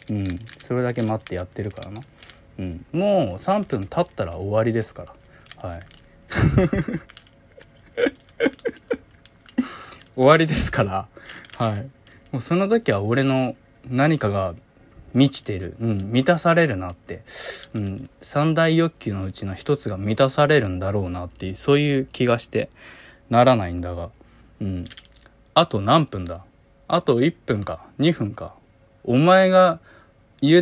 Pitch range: 100-155 Hz